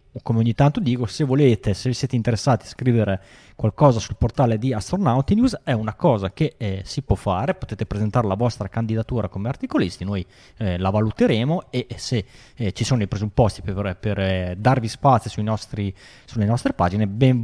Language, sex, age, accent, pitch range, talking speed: Italian, male, 20-39, native, 100-125 Hz, 185 wpm